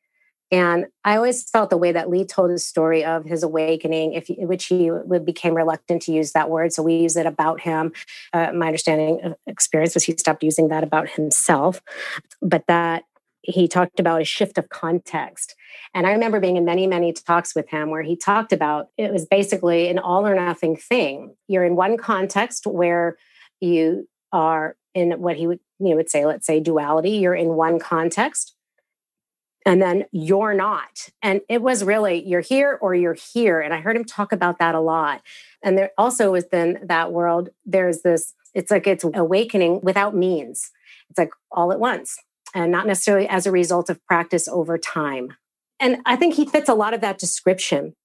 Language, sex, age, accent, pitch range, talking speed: English, female, 30-49, American, 165-195 Hz, 195 wpm